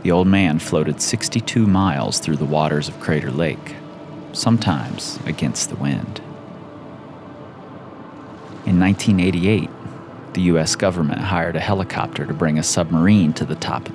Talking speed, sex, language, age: 140 wpm, male, English, 30-49